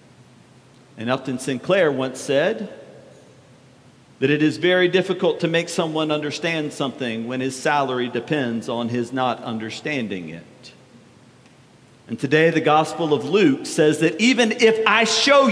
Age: 50-69